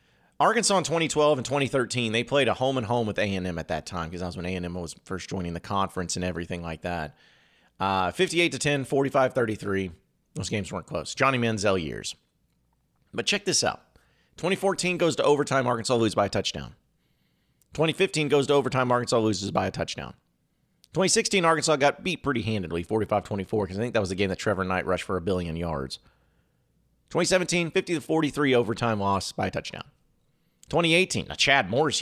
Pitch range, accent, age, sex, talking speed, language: 95-145 Hz, American, 30-49, male, 185 wpm, English